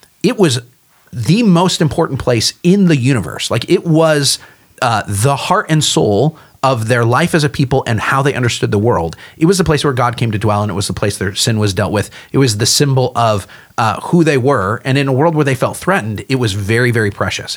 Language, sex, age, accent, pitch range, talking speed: English, male, 40-59, American, 115-150 Hz, 240 wpm